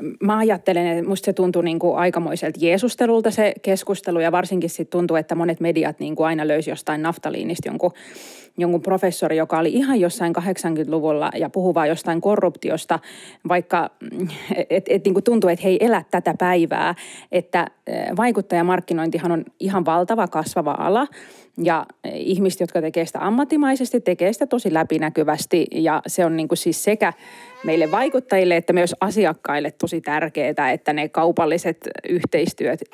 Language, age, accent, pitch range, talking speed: Finnish, 30-49, native, 165-195 Hz, 150 wpm